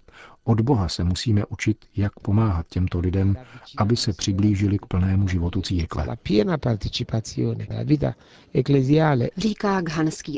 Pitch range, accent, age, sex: 90-110 Hz, native, 50-69, male